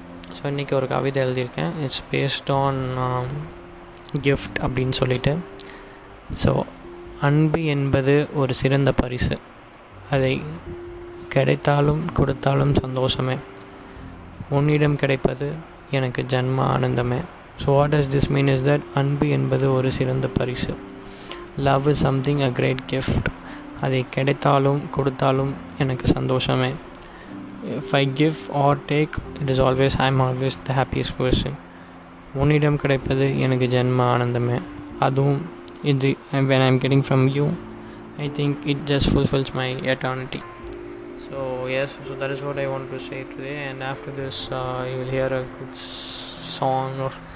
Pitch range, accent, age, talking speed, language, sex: 130-140 Hz, native, 20-39, 130 wpm, Tamil, male